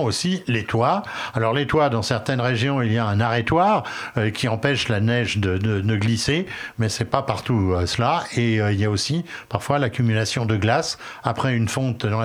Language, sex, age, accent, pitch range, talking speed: French, male, 60-79, French, 115-145 Hz, 215 wpm